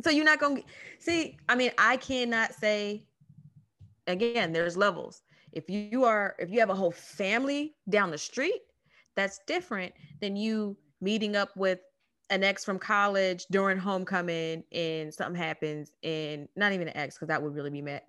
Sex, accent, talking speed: female, American, 175 wpm